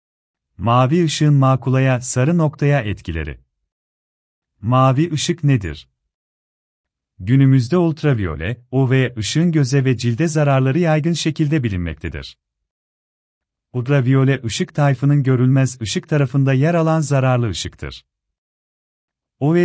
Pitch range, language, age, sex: 90-145 Hz, Turkish, 40-59, male